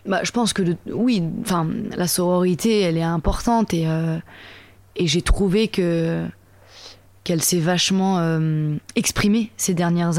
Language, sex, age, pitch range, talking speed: French, female, 20-39, 160-200 Hz, 140 wpm